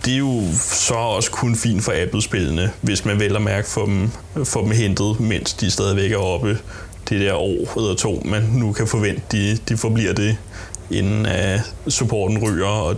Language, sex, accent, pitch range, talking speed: Danish, male, native, 100-115 Hz, 185 wpm